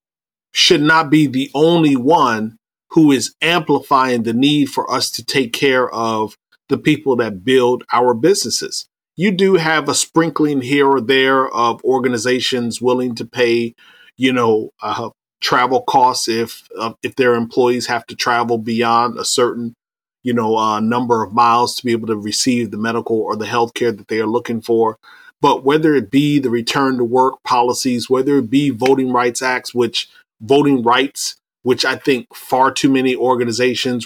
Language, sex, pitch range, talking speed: English, male, 120-140 Hz, 175 wpm